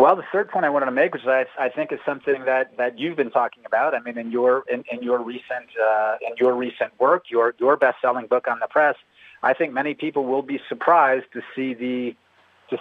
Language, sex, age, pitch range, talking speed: English, male, 30-49, 120-140 Hz, 235 wpm